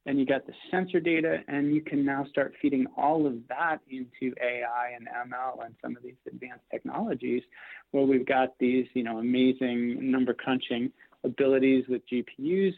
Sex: male